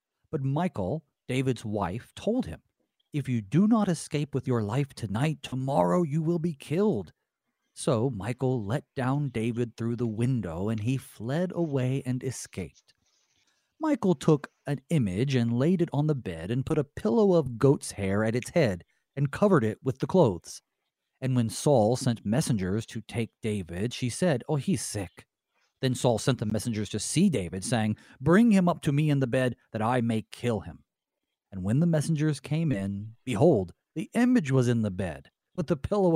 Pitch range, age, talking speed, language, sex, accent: 115-155 Hz, 40-59, 185 wpm, English, male, American